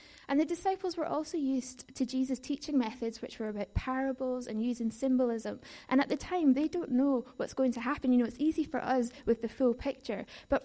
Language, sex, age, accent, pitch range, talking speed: English, female, 10-29, British, 230-265 Hz, 220 wpm